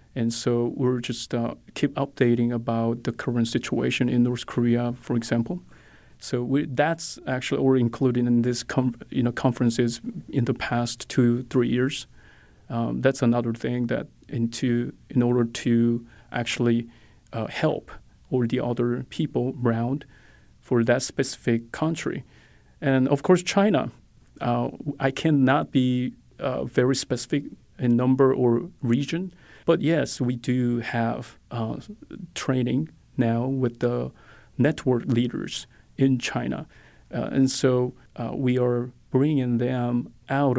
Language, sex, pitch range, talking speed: English, male, 120-130 Hz, 135 wpm